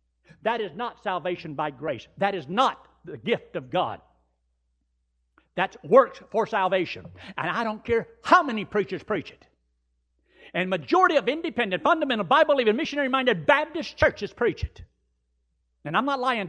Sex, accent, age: male, American, 60-79